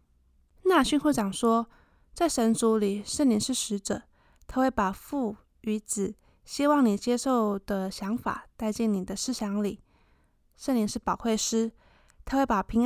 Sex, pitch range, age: female, 200-245 Hz, 20-39